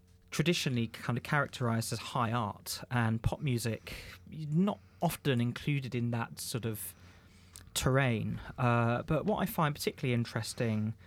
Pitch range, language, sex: 105-120 Hz, English, male